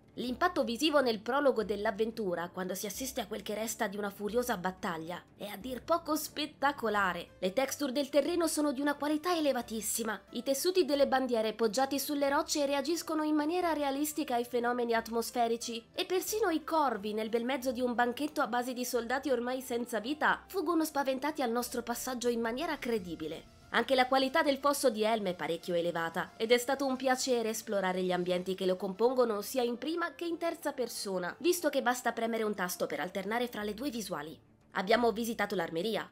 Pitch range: 210-280 Hz